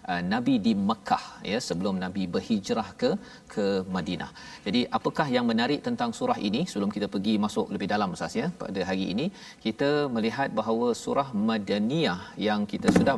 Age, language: 40-59, Malayalam